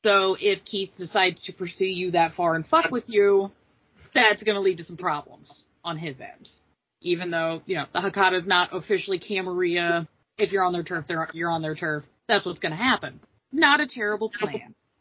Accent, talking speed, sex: American, 210 wpm, female